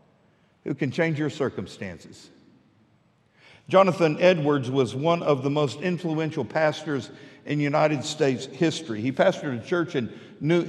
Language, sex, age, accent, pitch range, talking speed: English, male, 50-69, American, 130-170 Hz, 135 wpm